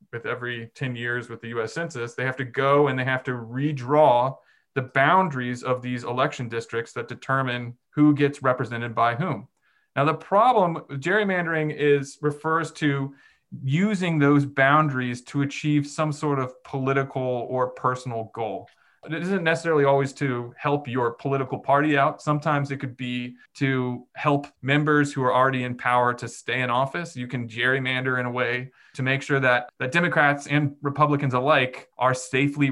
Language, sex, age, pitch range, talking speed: English, male, 30-49, 125-150 Hz, 170 wpm